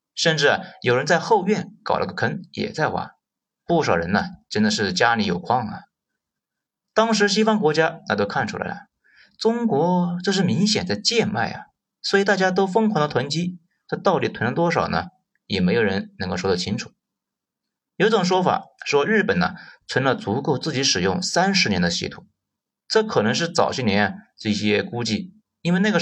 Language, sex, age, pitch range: Chinese, male, 30-49, 160-210 Hz